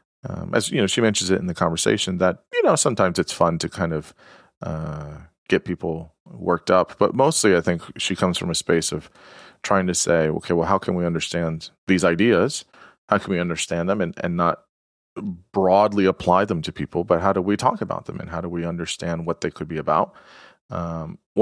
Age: 30-49